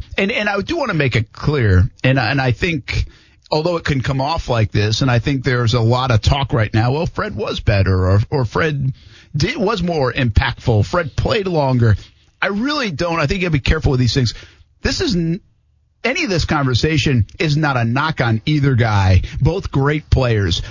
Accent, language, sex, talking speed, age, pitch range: American, English, male, 215 wpm, 50-69, 110-150 Hz